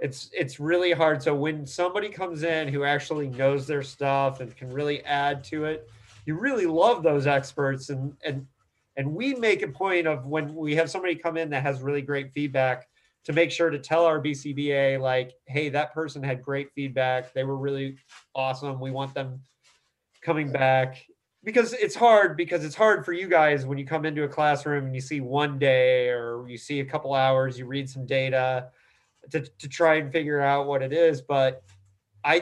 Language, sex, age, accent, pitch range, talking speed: English, male, 30-49, American, 130-155 Hz, 200 wpm